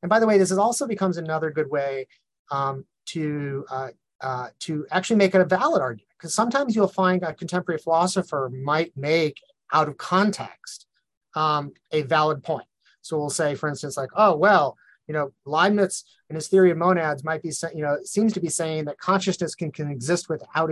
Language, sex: English, male